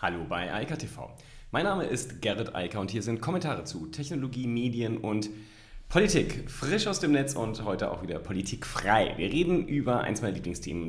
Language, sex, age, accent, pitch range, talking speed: German, male, 30-49, German, 100-145 Hz, 190 wpm